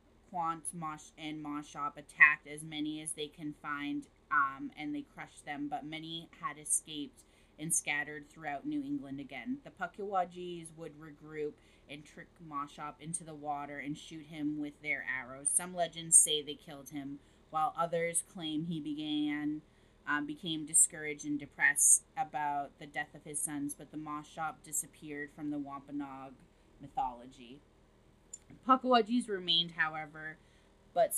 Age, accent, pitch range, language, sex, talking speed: 20-39, American, 145-170 Hz, English, female, 145 wpm